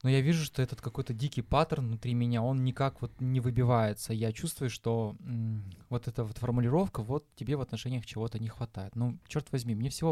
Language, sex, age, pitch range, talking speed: Russian, male, 20-39, 120-150 Hz, 190 wpm